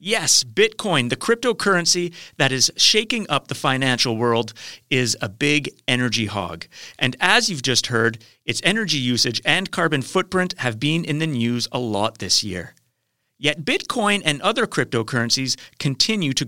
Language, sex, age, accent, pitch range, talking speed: English, male, 40-59, American, 120-170 Hz, 155 wpm